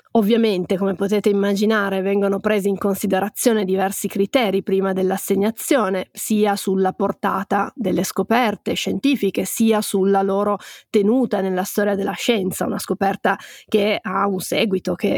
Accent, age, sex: native, 20-39, female